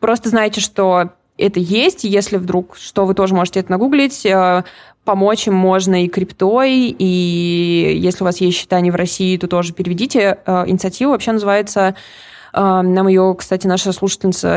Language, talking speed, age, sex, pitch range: Russian, 150 wpm, 20-39, female, 185-215 Hz